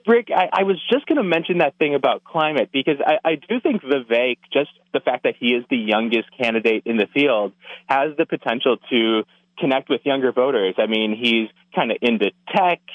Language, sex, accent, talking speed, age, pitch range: English, male, American, 210 wpm, 30-49, 115-160 Hz